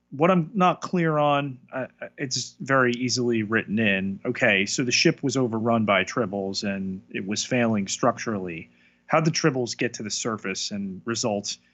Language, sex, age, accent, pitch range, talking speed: English, male, 30-49, American, 90-120 Hz, 175 wpm